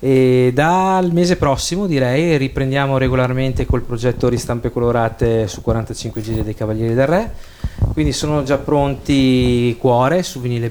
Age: 30-49